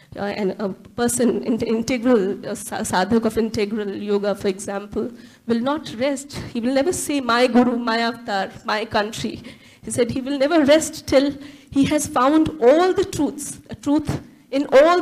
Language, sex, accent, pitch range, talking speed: English, female, Indian, 215-260 Hz, 165 wpm